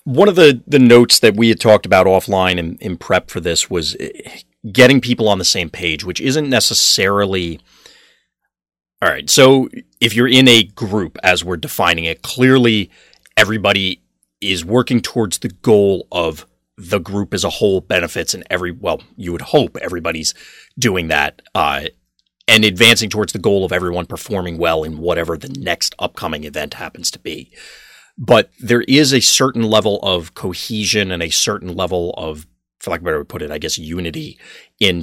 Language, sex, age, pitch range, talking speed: English, male, 30-49, 85-115 Hz, 185 wpm